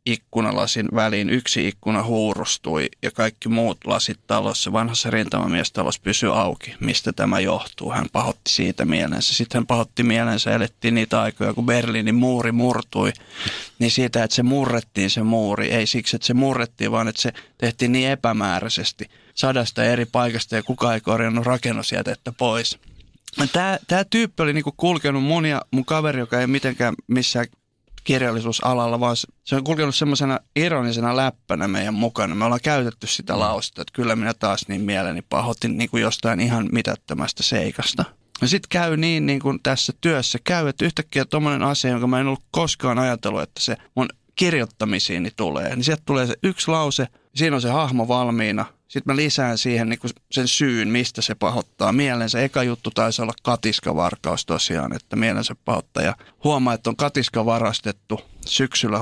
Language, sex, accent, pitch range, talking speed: Finnish, male, native, 115-135 Hz, 165 wpm